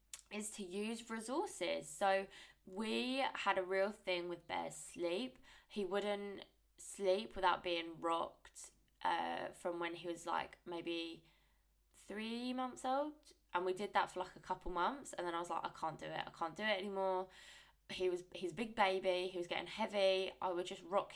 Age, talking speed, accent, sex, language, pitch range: 20-39, 185 wpm, British, female, English, 175-200 Hz